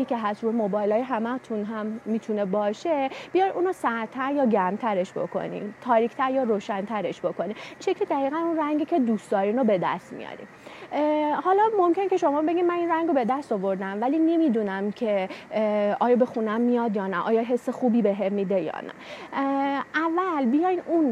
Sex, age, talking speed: female, 30-49, 175 wpm